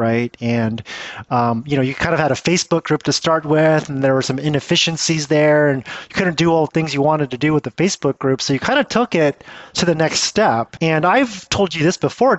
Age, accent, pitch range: 30-49, American, 130-160 Hz